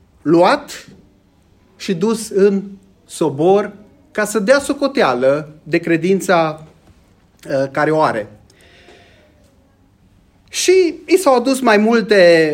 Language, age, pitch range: Romanian, 30-49, 155-220 Hz